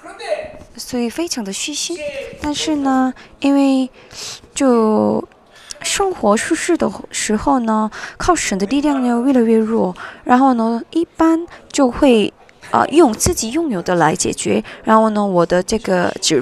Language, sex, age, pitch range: Chinese, female, 20-39, 205-300 Hz